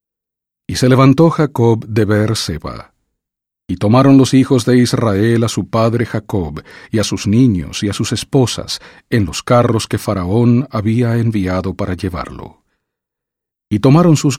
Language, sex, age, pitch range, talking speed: English, male, 50-69, 95-125 Hz, 150 wpm